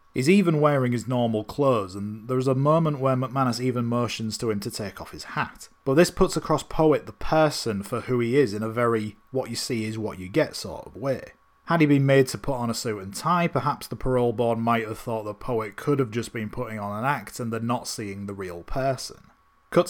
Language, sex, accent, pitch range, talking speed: English, male, British, 110-135 Hz, 225 wpm